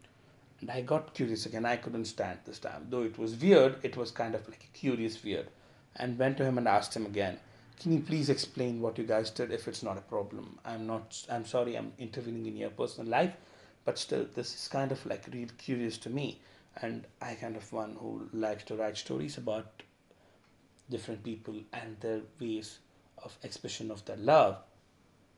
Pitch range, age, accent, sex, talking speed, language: 110-145 Hz, 30-49, Indian, male, 200 wpm, English